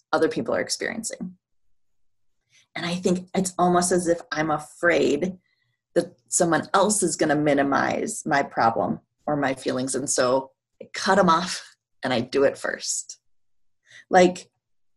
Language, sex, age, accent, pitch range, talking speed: English, female, 30-49, American, 140-175 Hz, 150 wpm